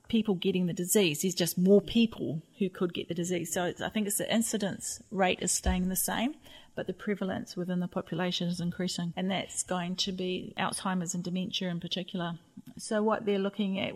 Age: 40-59